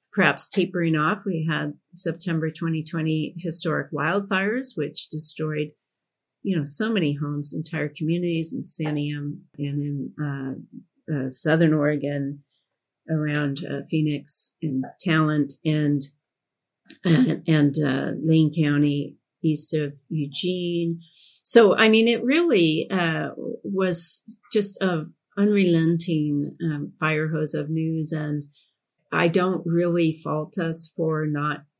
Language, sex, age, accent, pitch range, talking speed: English, female, 40-59, American, 150-175 Hz, 120 wpm